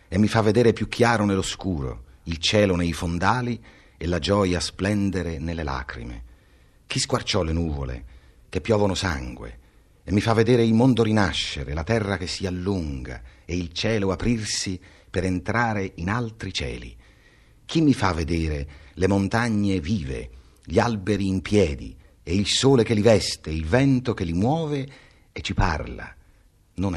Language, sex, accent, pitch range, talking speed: Italian, male, native, 75-110 Hz, 160 wpm